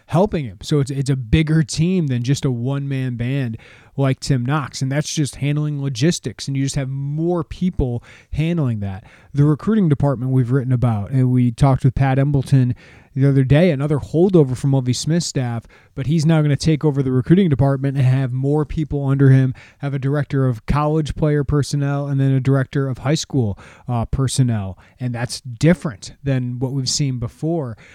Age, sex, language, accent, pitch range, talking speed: 30-49, male, English, American, 125-150 Hz, 195 wpm